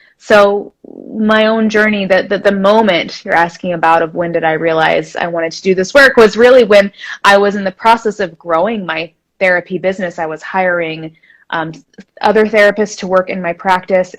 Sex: female